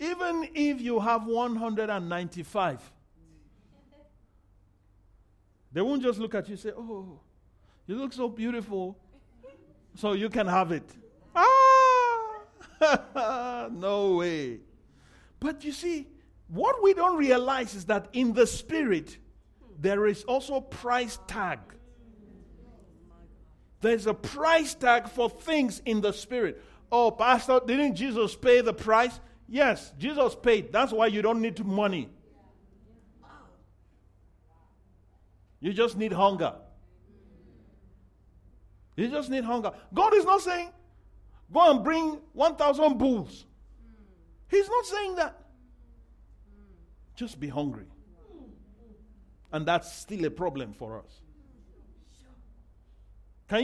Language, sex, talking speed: English, male, 115 wpm